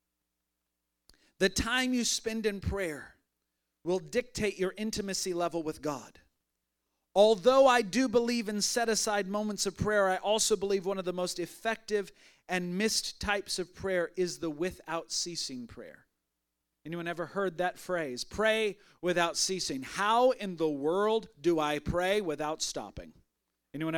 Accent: American